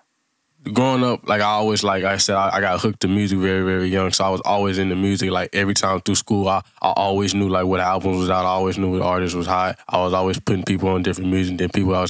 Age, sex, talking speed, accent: 20-39, male, 280 wpm, American